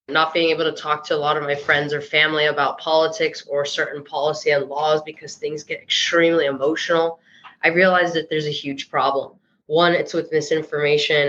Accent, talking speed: American, 190 wpm